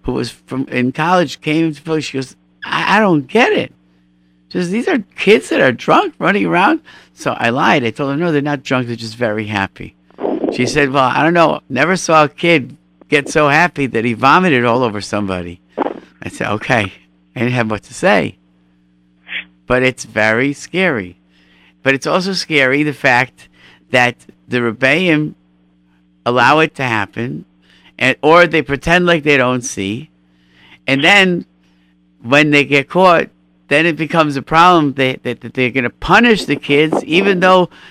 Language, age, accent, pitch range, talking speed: English, 50-69, American, 95-150 Hz, 180 wpm